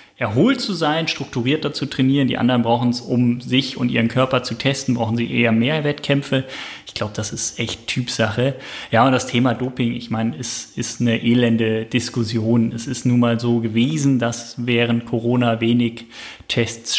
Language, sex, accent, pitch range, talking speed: German, male, German, 115-135 Hz, 180 wpm